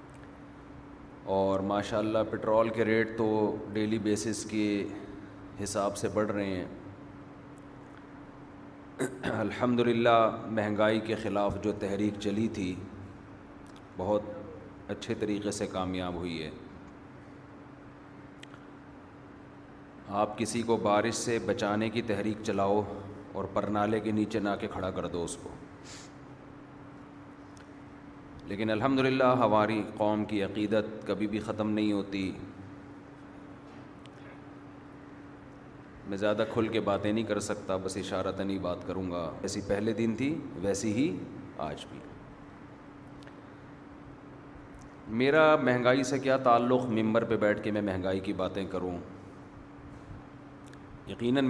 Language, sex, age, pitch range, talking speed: Urdu, male, 30-49, 100-115 Hz, 115 wpm